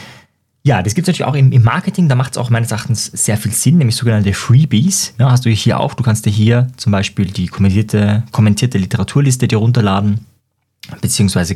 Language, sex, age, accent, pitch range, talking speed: German, male, 20-39, German, 105-135 Hz, 205 wpm